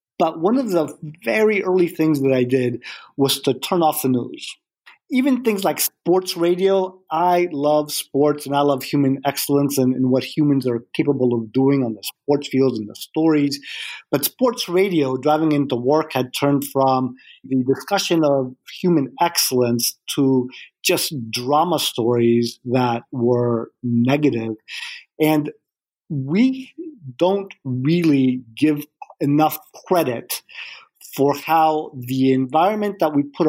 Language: English